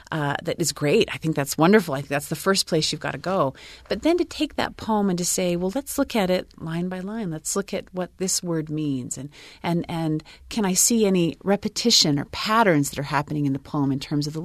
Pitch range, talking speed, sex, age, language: 145-195 Hz, 260 wpm, female, 40-59, English